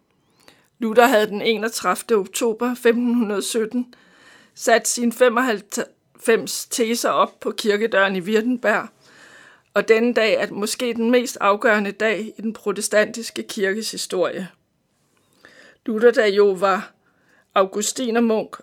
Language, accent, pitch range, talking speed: Danish, native, 195-235 Hz, 110 wpm